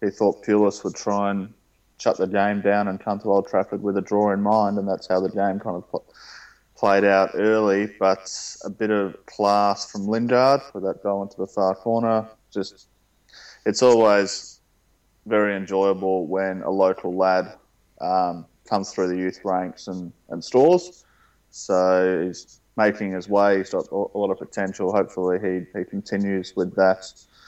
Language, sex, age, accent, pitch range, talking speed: English, male, 20-39, Australian, 95-105 Hz, 175 wpm